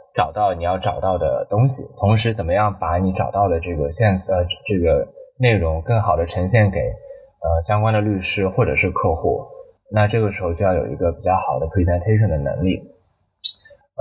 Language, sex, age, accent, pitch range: Chinese, male, 20-39, native, 95-120 Hz